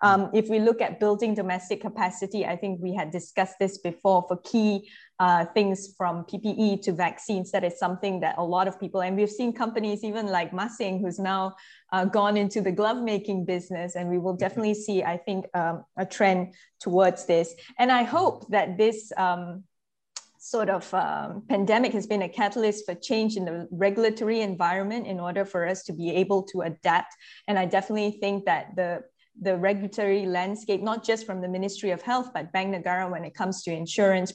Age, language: 20-39, English